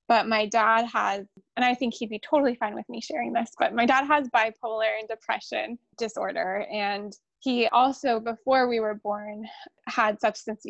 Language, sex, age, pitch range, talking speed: English, female, 20-39, 210-245 Hz, 180 wpm